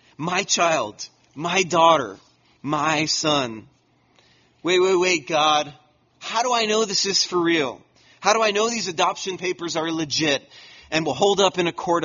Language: English